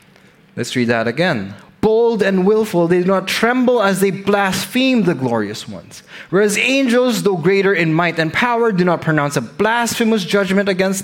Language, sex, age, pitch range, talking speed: English, male, 20-39, 155-210 Hz, 175 wpm